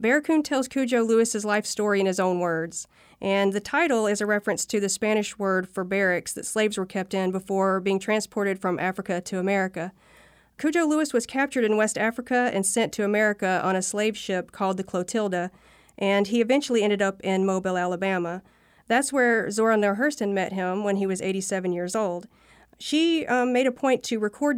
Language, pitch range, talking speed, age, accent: English, 190-225 Hz, 195 wpm, 40-59, American